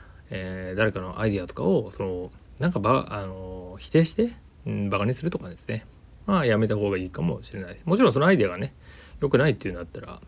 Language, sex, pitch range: Japanese, male, 95-140 Hz